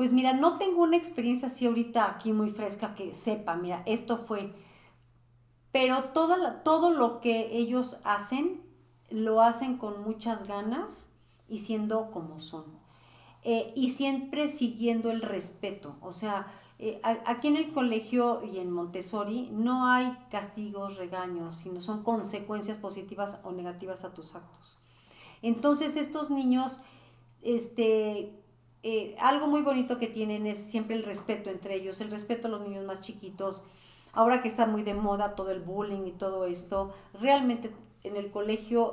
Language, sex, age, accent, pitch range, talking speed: English, female, 40-59, Mexican, 200-240 Hz, 155 wpm